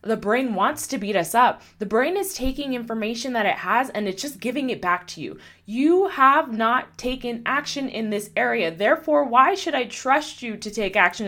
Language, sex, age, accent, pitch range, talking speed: English, female, 20-39, American, 180-265 Hz, 215 wpm